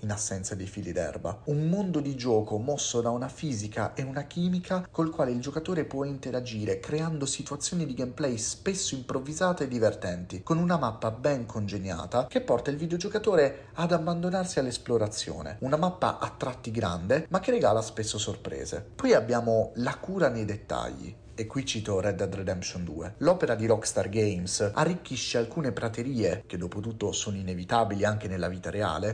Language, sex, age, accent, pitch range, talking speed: Italian, male, 30-49, native, 105-145 Hz, 165 wpm